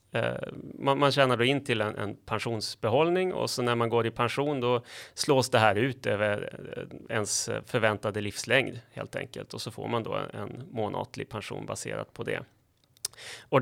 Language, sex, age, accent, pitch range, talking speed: Swedish, male, 30-49, native, 110-125 Hz, 170 wpm